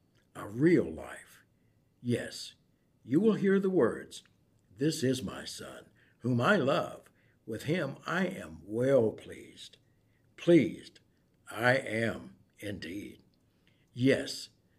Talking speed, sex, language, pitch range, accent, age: 110 wpm, male, English, 115-160 Hz, American, 60-79